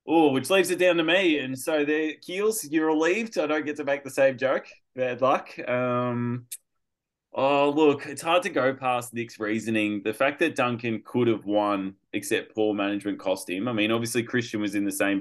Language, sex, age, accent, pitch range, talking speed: English, male, 20-39, Australian, 95-135 Hz, 210 wpm